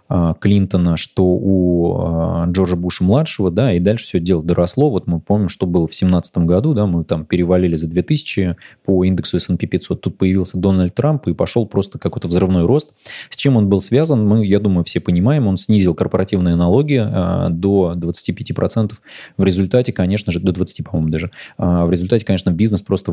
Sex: male